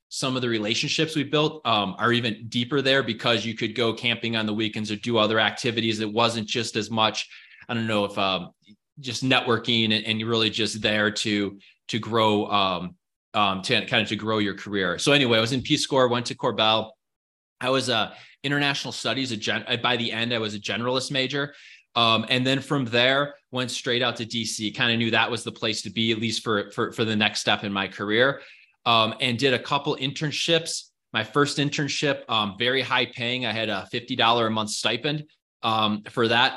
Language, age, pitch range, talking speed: English, 20-39, 110-130 Hz, 215 wpm